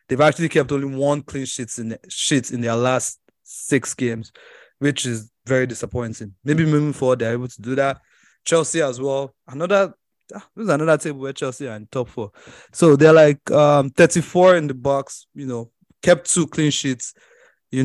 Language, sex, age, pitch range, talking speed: English, male, 20-39, 120-145 Hz, 185 wpm